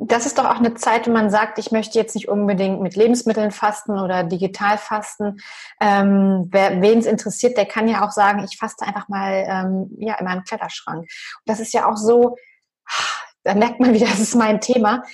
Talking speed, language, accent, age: 200 wpm, German, German, 30-49